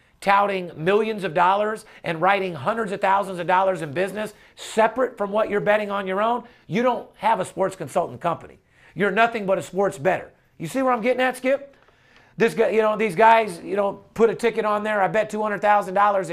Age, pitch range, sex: 40-59, 175-215 Hz, male